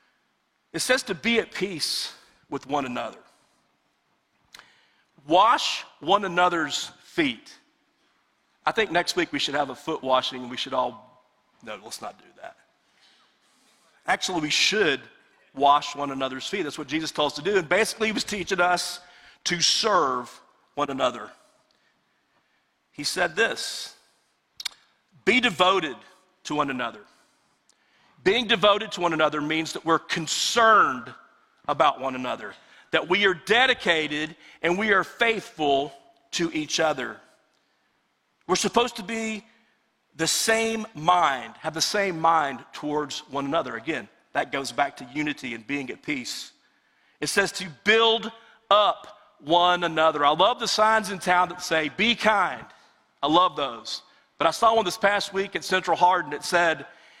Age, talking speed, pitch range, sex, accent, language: 50-69, 150 wpm, 155-225 Hz, male, American, English